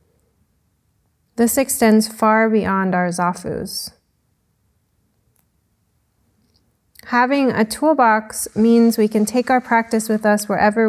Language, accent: English, American